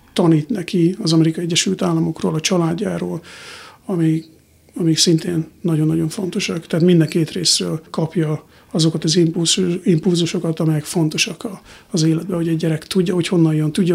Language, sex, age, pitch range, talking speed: Hungarian, male, 50-69, 160-200 Hz, 140 wpm